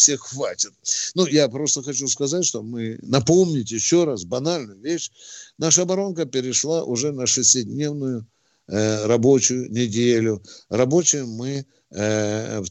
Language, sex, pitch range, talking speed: Russian, male, 130-175 Hz, 125 wpm